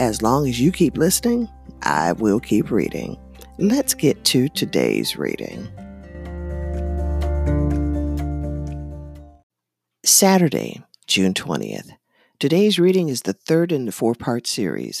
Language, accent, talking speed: English, American, 110 wpm